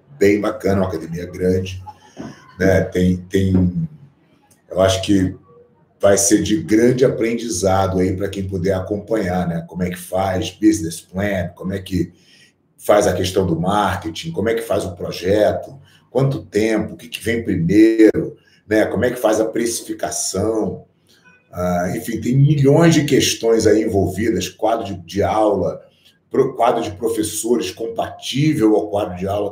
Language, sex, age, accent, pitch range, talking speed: English, male, 40-59, Brazilian, 95-120 Hz, 155 wpm